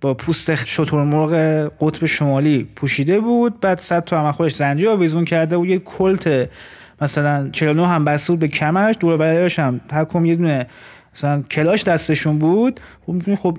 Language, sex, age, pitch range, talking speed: Persian, male, 20-39, 145-190 Hz, 170 wpm